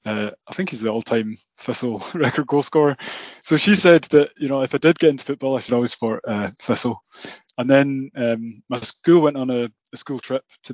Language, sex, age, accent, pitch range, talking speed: English, male, 20-39, British, 115-145 Hz, 225 wpm